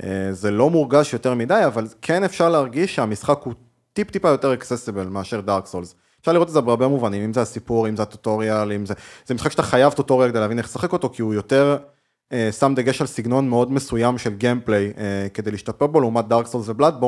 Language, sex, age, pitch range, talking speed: Hebrew, male, 20-39, 110-140 Hz, 210 wpm